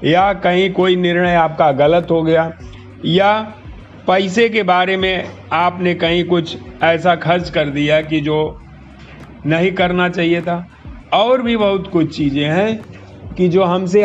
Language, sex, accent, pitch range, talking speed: Hindi, male, native, 160-210 Hz, 150 wpm